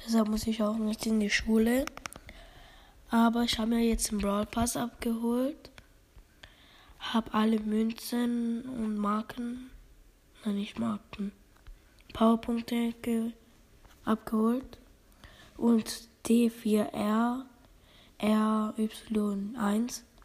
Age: 20-39